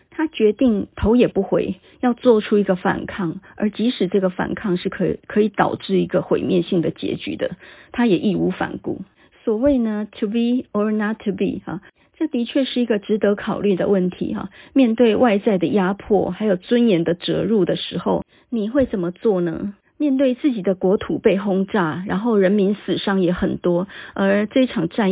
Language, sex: Chinese, female